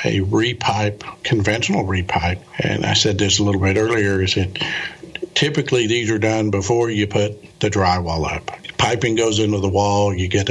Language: English